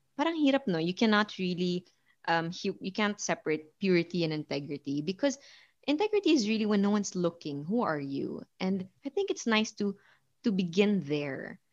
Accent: Filipino